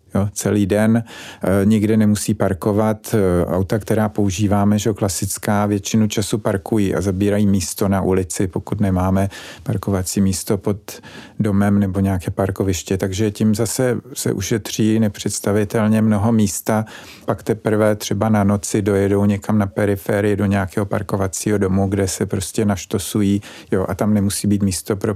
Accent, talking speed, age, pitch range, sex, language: native, 145 wpm, 40-59, 100-110 Hz, male, Czech